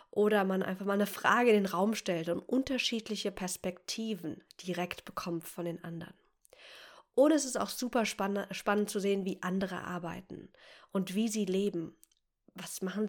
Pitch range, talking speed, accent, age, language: 180-220 Hz, 160 wpm, German, 20-39, German